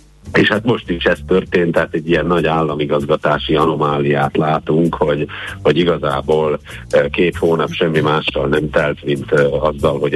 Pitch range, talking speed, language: 75-85 Hz, 150 wpm, Hungarian